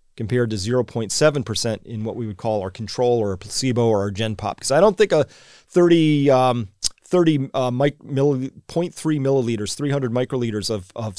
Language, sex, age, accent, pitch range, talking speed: English, male, 30-49, American, 110-140 Hz, 175 wpm